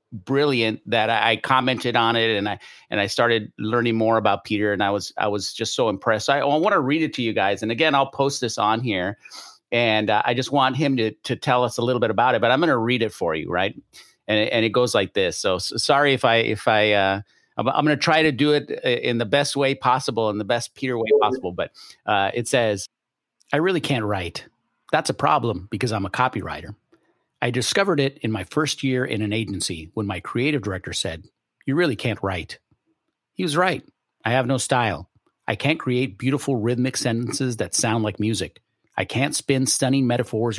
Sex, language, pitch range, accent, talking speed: male, English, 105-135 Hz, American, 220 wpm